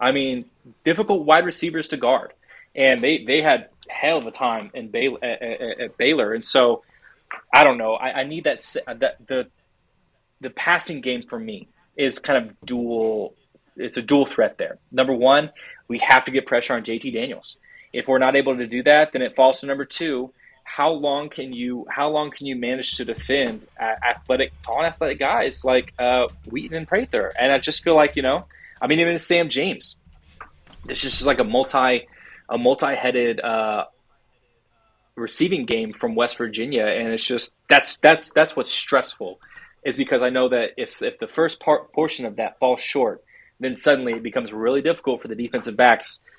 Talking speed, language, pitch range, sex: 190 wpm, English, 120-155 Hz, male